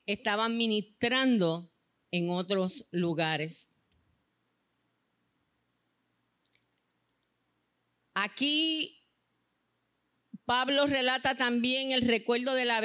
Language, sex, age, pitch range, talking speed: Spanish, female, 40-59, 175-240 Hz, 50 wpm